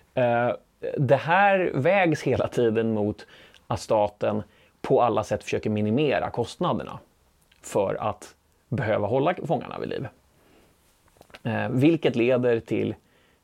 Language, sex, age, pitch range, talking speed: Swedish, male, 30-49, 110-135 Hz, 105 wpm